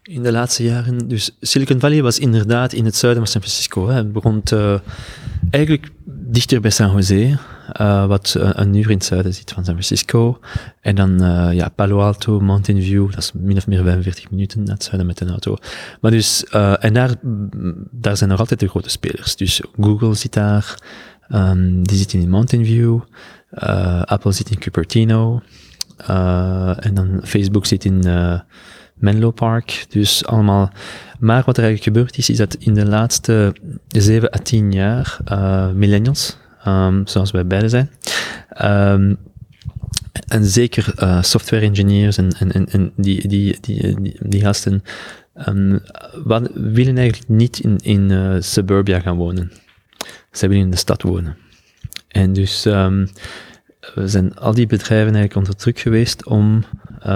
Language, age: Dutch, 20-39